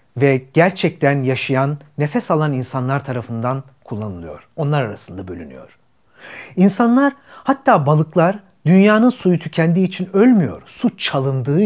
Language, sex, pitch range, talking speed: Turkish, male, 135-200 Hz, 110 wpm